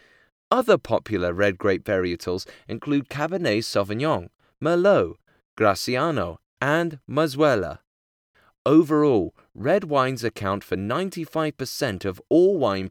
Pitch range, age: 100-160 Hz, 30-49